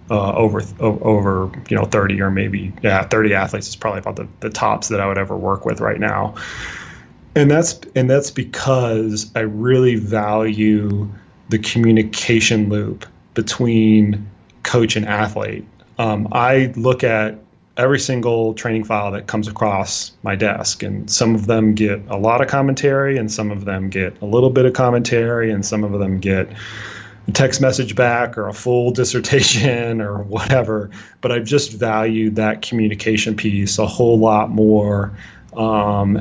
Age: 30-49